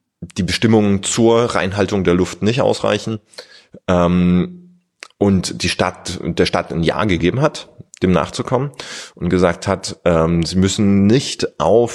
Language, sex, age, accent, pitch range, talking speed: German, male, 30-49, German, 85-110 Hz, 140 wpm